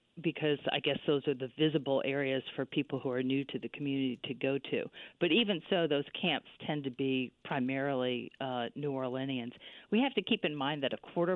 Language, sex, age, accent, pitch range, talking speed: English, female, 50-69, American, 140-170 Hz, 210 wpm